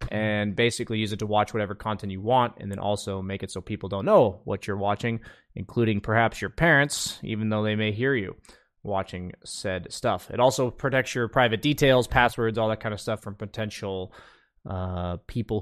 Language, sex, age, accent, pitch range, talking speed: English, male, 20-39, American, 110-155 Hz, 195 wpm